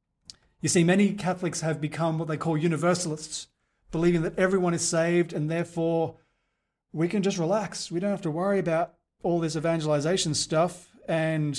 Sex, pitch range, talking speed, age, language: male, 145-185 Hz, 165 wpm, 30-49, English